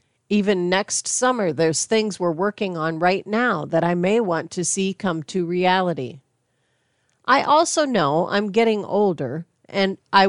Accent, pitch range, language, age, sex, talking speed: American, 145-200 Hz, English, 40-59, female, 155 wpm